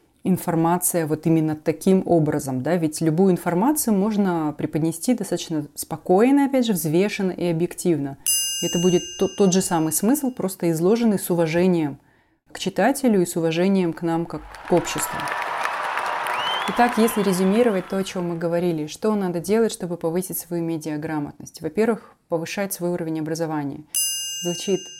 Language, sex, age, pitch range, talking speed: Russian, female, 30-49, 160-190 Hz, 140 wpm